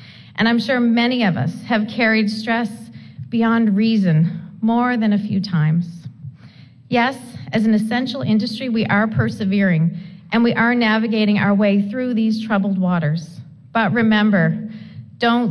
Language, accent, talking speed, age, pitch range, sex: English, American, 145 wpm, 40-59, 175-235 Hz, female